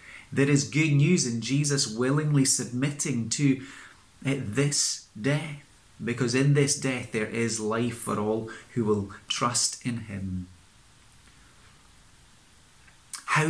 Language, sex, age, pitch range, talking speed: English, male, 30-49, 110-145 Hz, 115 wpm